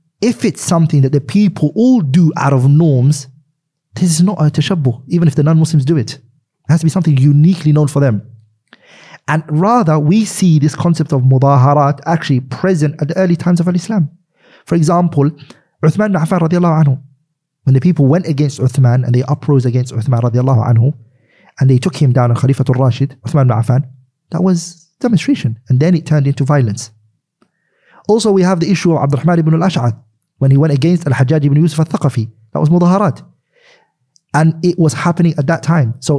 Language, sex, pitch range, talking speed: English, male, 130-165 Hz, 190 wpm